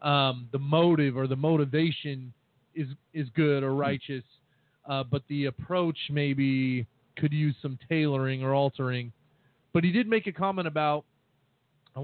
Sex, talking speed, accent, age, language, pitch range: male, 150 wpm, American, 30-49, English, 130-155 Hz